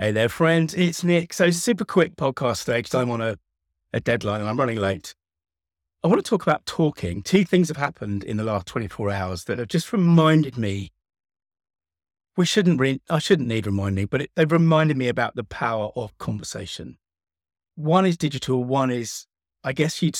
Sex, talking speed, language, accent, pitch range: male, 185 wpm, English, British, 90-145 Hz